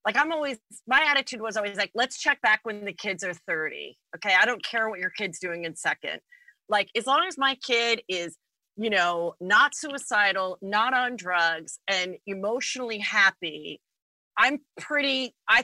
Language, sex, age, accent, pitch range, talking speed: English, female, 30-49, American, 190-255 Hz, 175 wpm